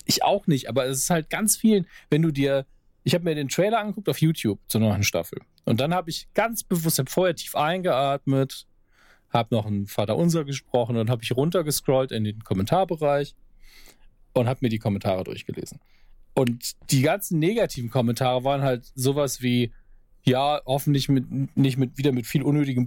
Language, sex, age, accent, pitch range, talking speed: German, male, 40-59, German, 120-150 Hz, 185 wpm